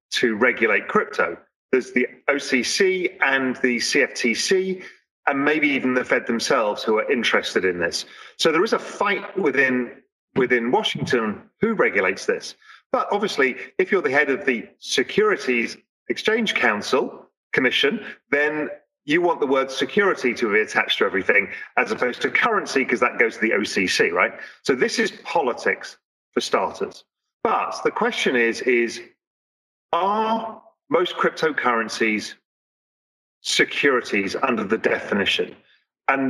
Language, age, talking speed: English, 40-59, 140 wpm